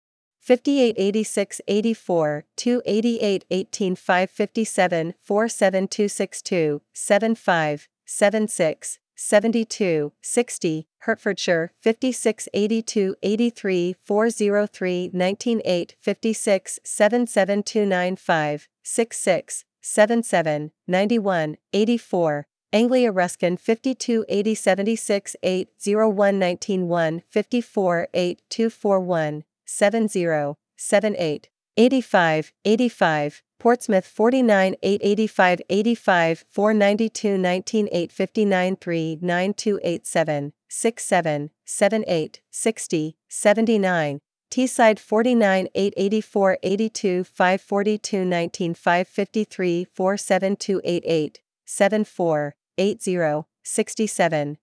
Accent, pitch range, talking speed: American, 175-220 Hz, 45 wpm